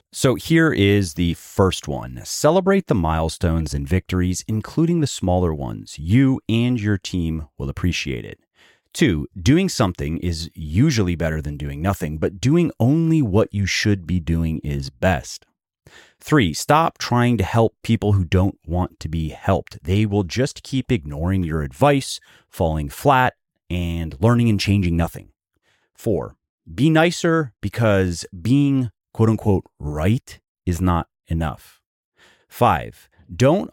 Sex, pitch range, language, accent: male, 85-115 Hz, English, American